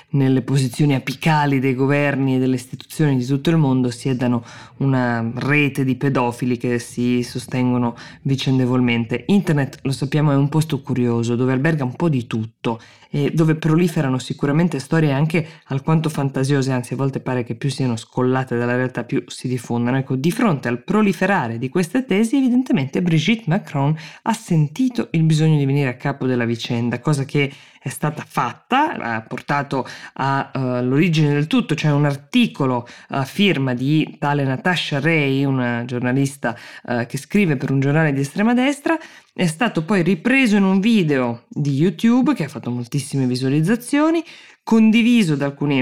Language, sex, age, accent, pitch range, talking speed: Italian, female, 20-39, native, 130-160 Hz, 160 wpm